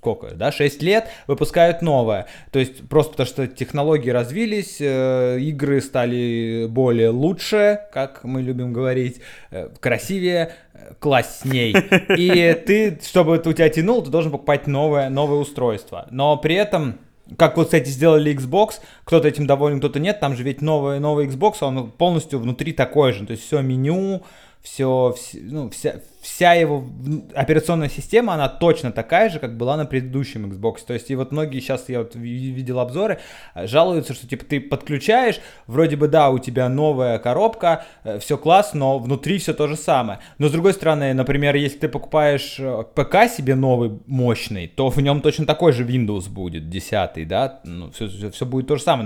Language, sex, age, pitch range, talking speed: Russian, male, 20-39, 125-160 Hz, 170 wpm